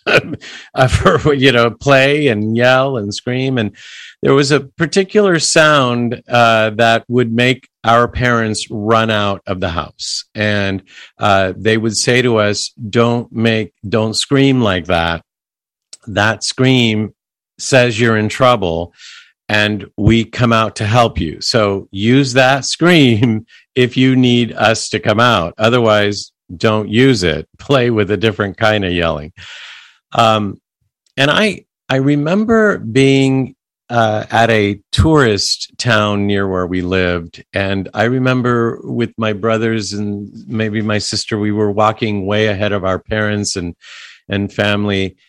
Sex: male